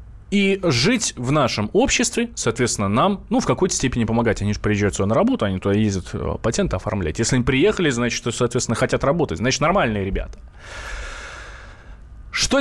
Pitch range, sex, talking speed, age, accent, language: 110-160 Hz, male, 160 wpm, 20-39, native, Russian